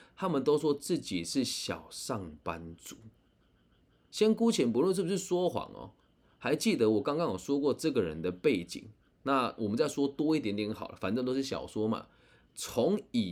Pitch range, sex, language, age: 95-145 Hz, male, Chinese, 20-39